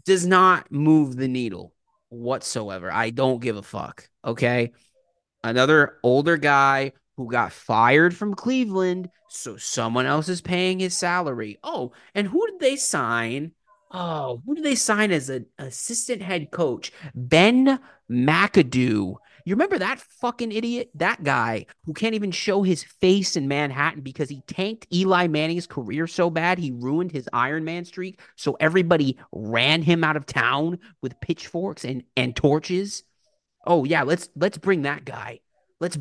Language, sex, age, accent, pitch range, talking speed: English, male, 30-49, American, 130-190 Hz, 155 wpm